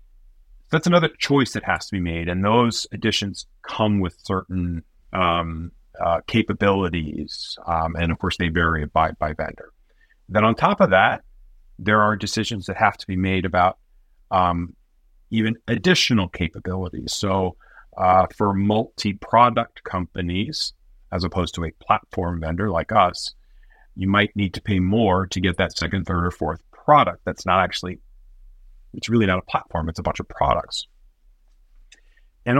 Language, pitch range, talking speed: English, 85-110 Hz, 155 wpm